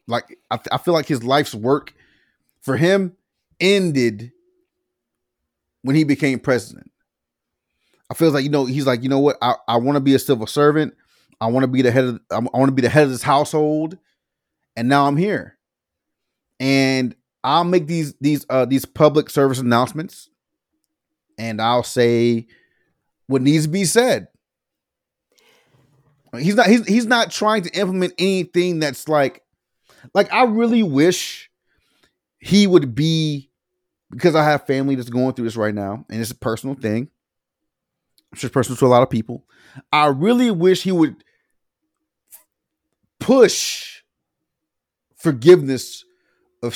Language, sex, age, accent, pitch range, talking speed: English, male, 30-49, American, 130-185 Hz, 155 wpm